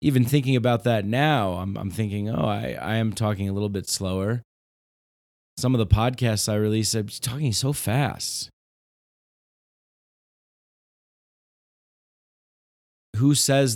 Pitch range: 90-120 Hz